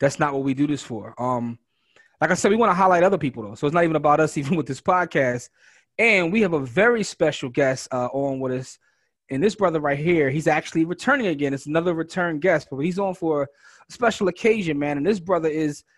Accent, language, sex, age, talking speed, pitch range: American, English, male, 30-49, 240 wpm, 135-175 Hz